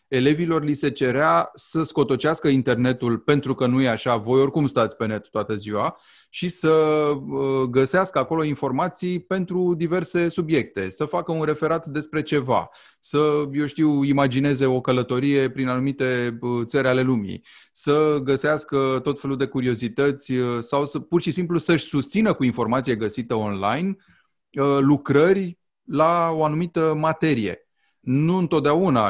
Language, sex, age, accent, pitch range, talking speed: Romanian, male, 30-49, native, 115-150 Hz, 140 wpm